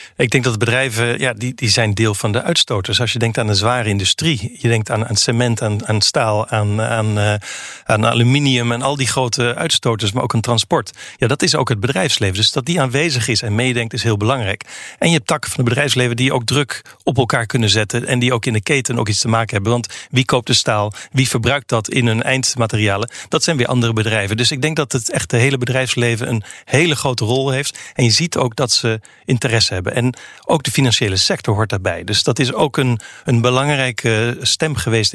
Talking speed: 230 wpm